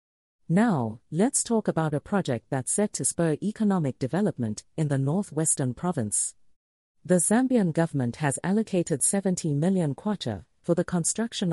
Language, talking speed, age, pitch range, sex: English, 140 wpm, 40-59, 125-195 Hz, female